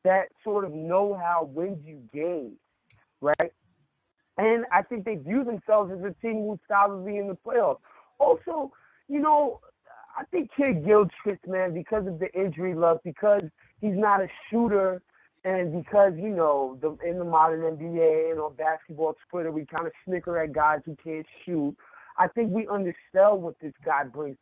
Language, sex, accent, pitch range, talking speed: English, male, American, 155-215 Hz, 170 wpm